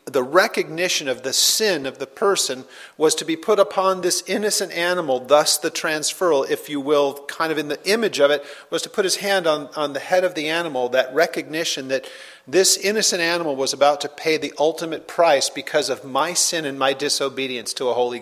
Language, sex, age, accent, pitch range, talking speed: English, male, 40-59, American, 140-180 Hz, 210 wpm